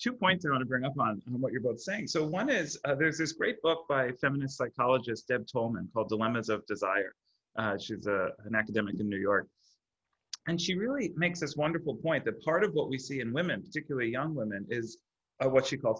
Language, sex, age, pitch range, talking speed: English, male, 30-49, 115-155 Hz, 225 wpm